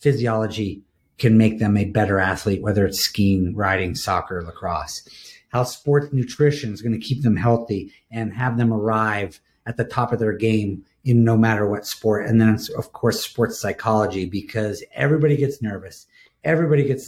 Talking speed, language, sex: 170 wpm, English, male